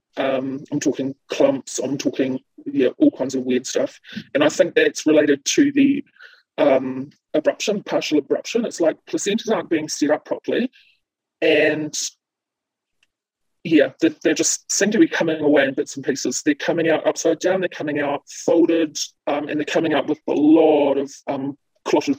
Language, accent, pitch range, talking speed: English, British, 130-165 Hz, 170 wpm